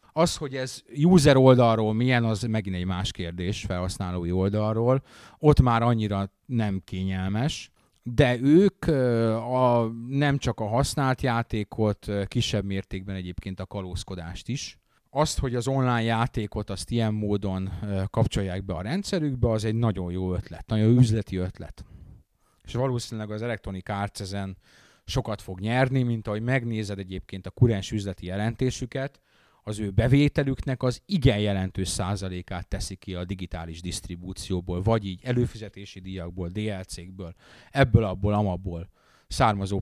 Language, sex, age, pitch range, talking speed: Hungarian, male, 30-49, 95-125 Hz, 135 wpm